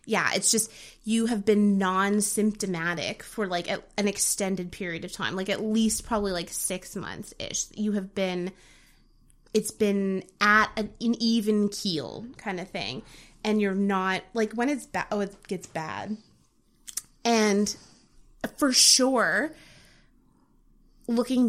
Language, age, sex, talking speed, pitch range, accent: English, 20-39, female, 135 wpm, 190-230 Hz, American